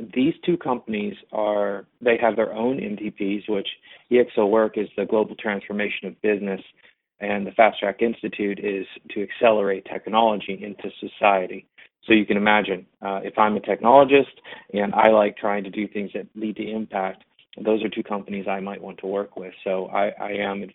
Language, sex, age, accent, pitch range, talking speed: English, male, 30-49, American, 100-110 Hz, 185 wpm